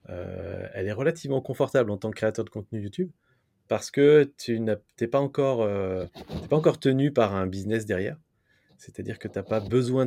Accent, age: French, 30-49